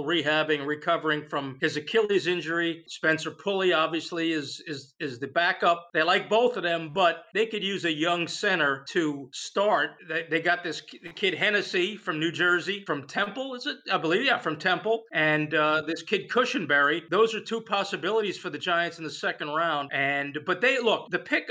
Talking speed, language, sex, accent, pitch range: 185 wpm, English, male, American, 155-195 Hz